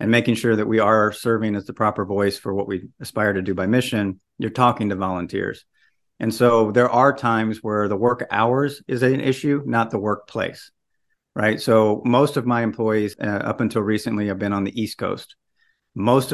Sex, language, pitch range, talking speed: male, English, 100-120 Hz, 200 wpm